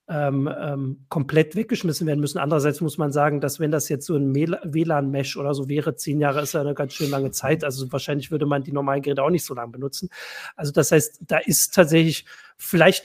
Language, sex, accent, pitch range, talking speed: German, male, German, 140-165 Hz, 215 wpm